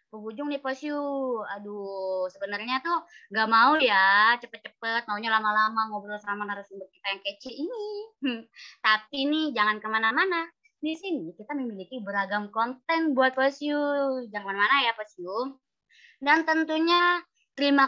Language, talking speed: Indonesian, 130 wpm